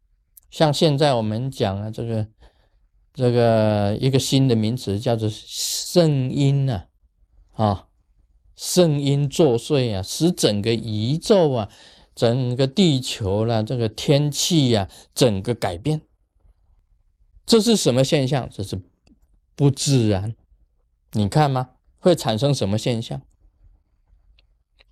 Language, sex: Chinese, male